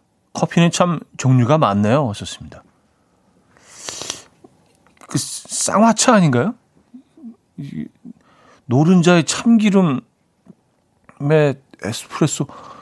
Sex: male